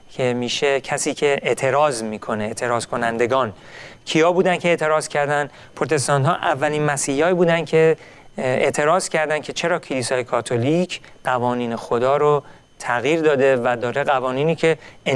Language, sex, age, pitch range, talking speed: Persian, male, 40-59, 125-155 Hz, 140 wpm